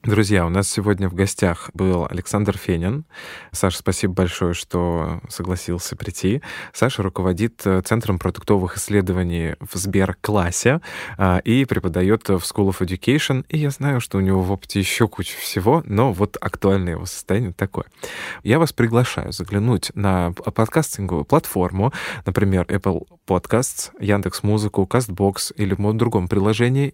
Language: Russian